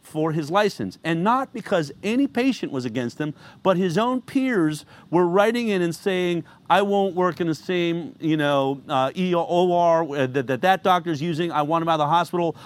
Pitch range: 155-205 Hz